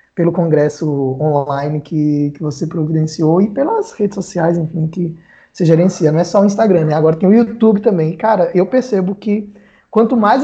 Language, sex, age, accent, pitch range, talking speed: Portuguese, male, 20-39, Brazilian, 165-220 Hz, 185 wpm